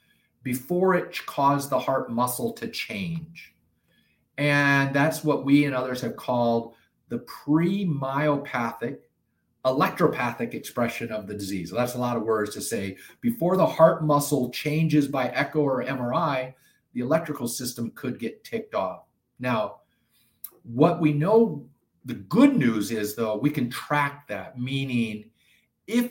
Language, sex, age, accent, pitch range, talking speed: English, male, 50-69, American, 125-160 Hz, 140 wpm